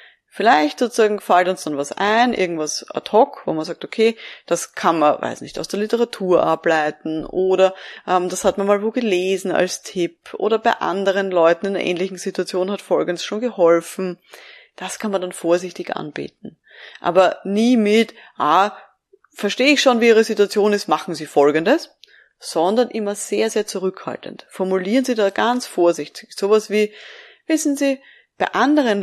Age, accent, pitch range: 20-39, German, 180-240 Hz